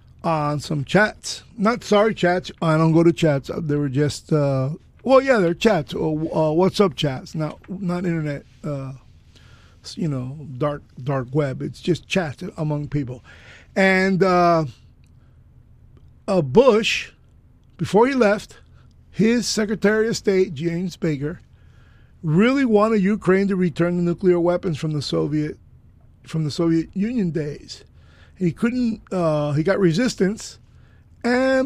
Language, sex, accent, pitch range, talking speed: English, male, American, 150-200 Hz, 140 wpm